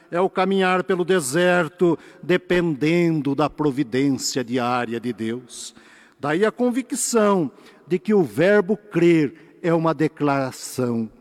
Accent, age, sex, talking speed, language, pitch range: Brazilian, 60-79, male, 120 wpm, Portuguese, 135-185 Hz